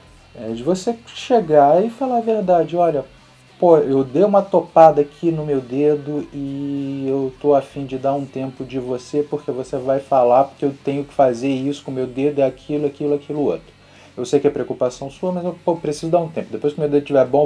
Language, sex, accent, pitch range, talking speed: Portuguese, male, Brazilian, 125-165 Hz, 225 wpm